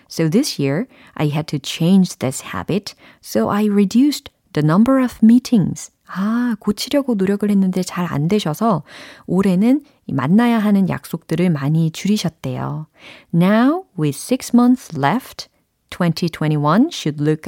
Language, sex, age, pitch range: Korean, female, 40-59, 155-215 Hz